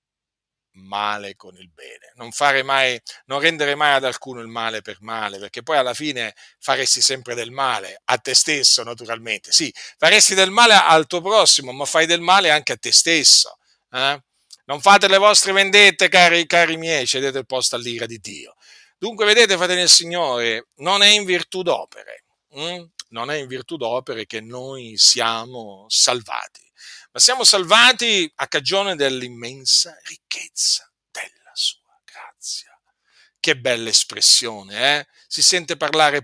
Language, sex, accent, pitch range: Italian, male, native, 115-195 Hz